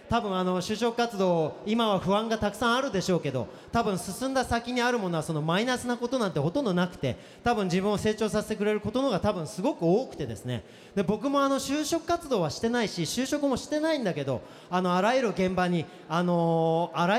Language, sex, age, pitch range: Japanese, male, 40-59, 170-240 Hz